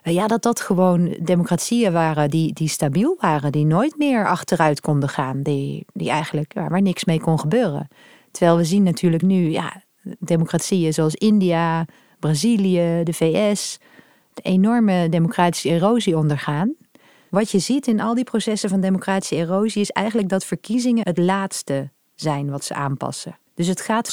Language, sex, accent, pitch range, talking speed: Dutch, female, Dutch, 160-200 Hz, 160 wpm